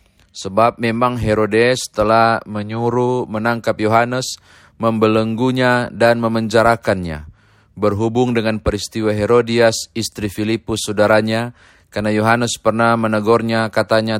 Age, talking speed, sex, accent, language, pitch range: 30-49, 95 wpm, male, native, Indonesian, 105-115 Hz